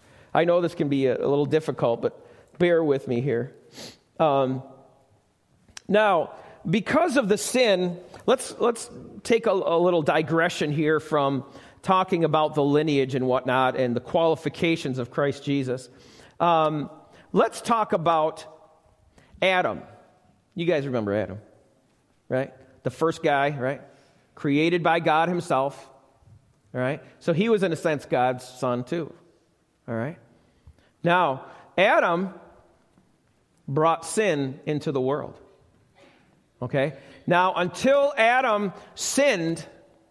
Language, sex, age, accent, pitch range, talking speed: English, male, 40-59, American, 135-195 Hz, 125 wpm